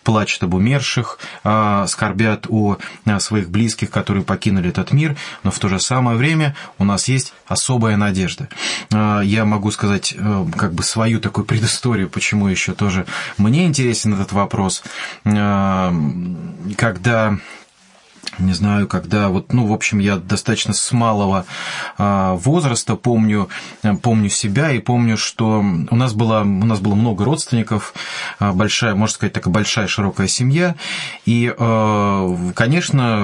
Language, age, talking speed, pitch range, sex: English, 20-39, 130 wpm, 100-120 Hz, male